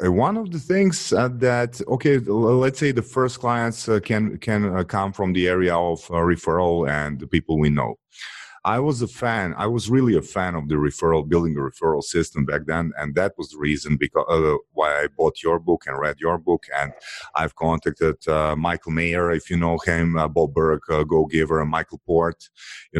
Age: 30-49